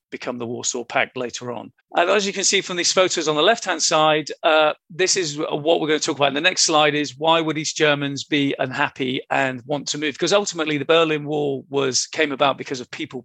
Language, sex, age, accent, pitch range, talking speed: English, male, 40-59, British, 135-155 Hz, 245 wpm